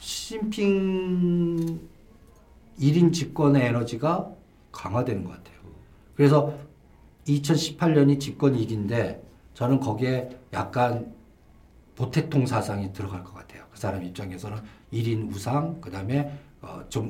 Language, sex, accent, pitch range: Korean, male, native, 110-160 Hz